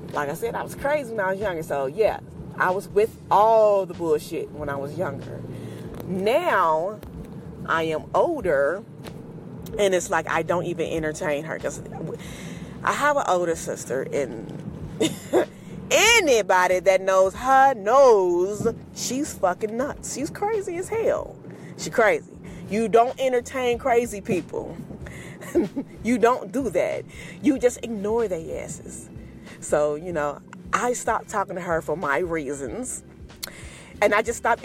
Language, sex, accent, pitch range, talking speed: English, female, American, 180-255 Hz, 145 wpm